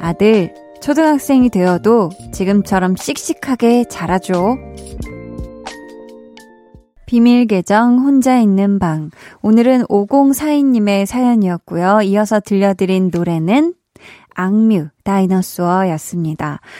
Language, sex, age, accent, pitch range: Korean, female, 20-39, native, 185-265 Hz